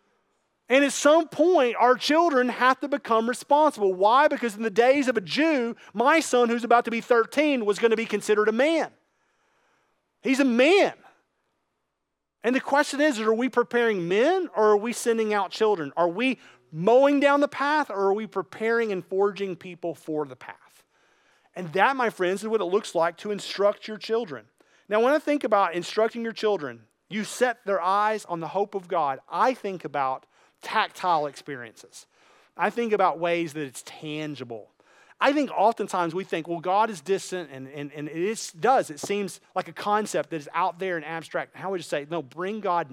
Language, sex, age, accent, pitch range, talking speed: English, male, 40-59, American, 165-235 Hz, 195 wpm